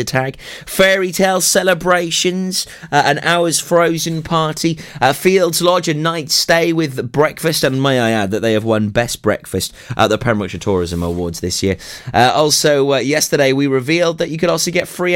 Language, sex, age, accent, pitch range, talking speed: English, male, 30-49, British, 110-160 Hz, 180 wpm